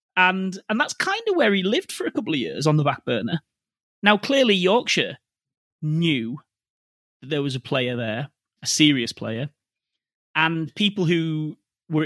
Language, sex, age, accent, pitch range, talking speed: English, male, 30-49, British, 140-200 Hz, 170 wpm